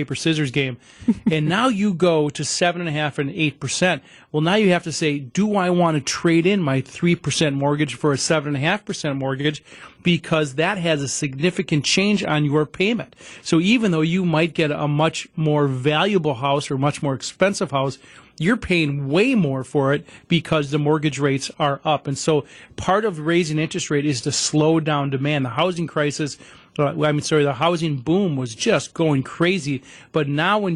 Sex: male